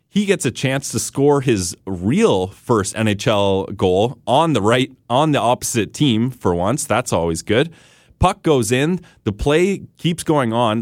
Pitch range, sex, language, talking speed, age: 105-135 Hz, male, English, 170 wpm, 30-49